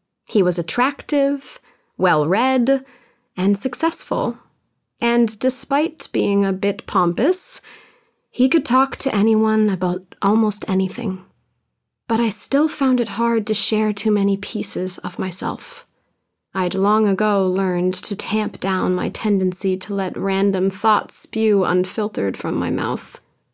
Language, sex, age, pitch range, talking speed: English, female, 20-39, 195-240 Hz, 130 wpm